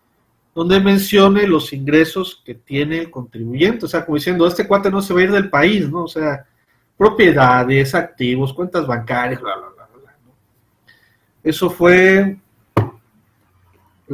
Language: Spanish